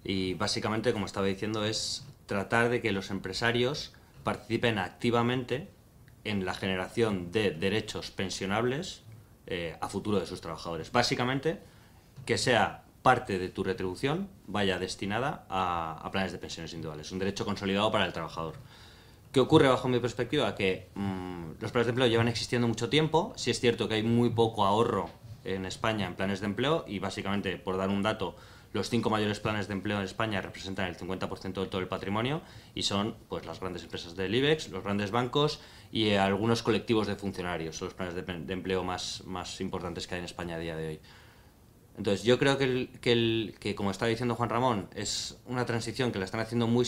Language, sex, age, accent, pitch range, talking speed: Spanish, male, 20-39, Spanish, 95-120 Hz, 195 wpm